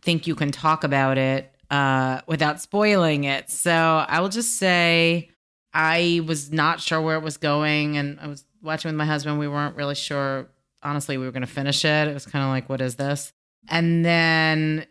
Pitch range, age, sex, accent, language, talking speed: 130-155 Hz, 30-49, female, American, English, 200 wpm